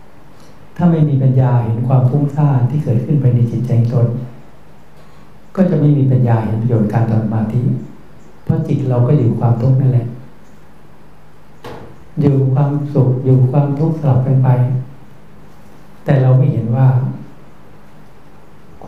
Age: 60-79